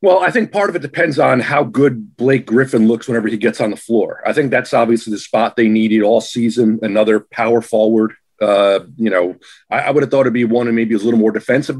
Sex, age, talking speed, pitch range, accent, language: male, 40-59, 255 wpm, 110-140 Hz, American, English